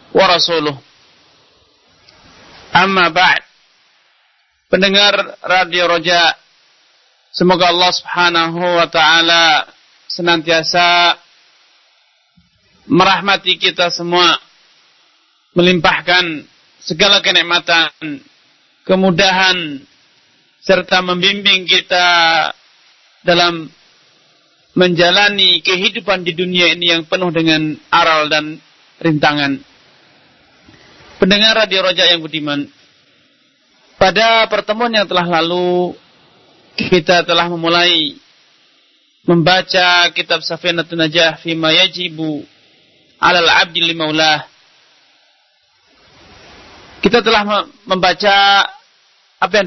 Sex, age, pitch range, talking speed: male, 40-59, 170-185 Hz, 75 wpm